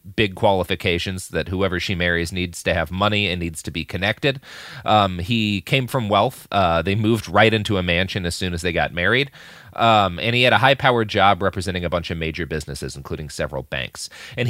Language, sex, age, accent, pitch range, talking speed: English, male, 30-49, American, 90-120 Hz, 205 wpm